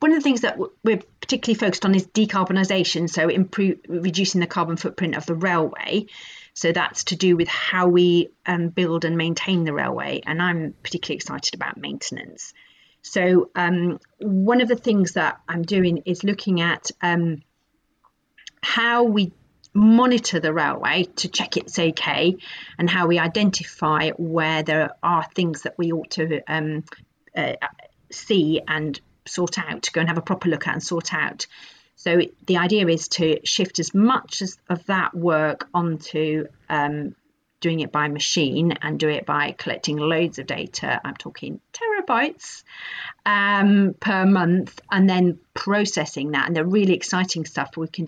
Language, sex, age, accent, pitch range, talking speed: English, female, 40-59, British, 160-190 Hz, 165 wpm